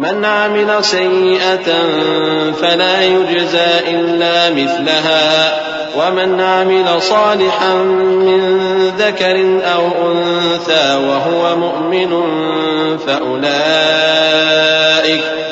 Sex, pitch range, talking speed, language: male, 160-190 Hz, 65 wpm, English